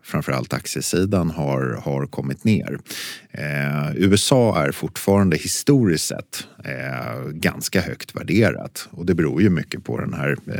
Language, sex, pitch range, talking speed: Swedish, male, 75-95 Hz, 140 wpm